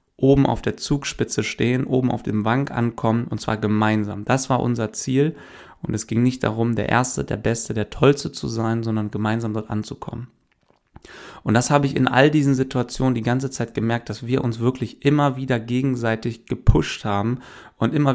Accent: German